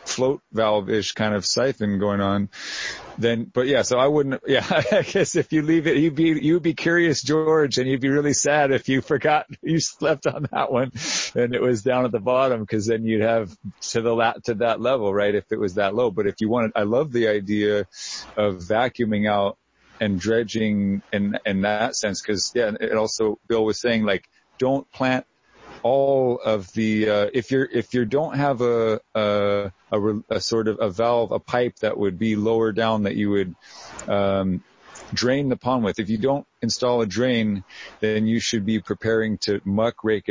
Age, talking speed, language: 40-59, 200 wpm, English